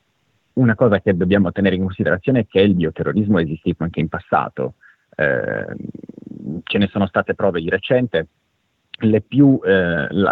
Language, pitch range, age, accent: Italian, 90-110 Hz, 30-49, native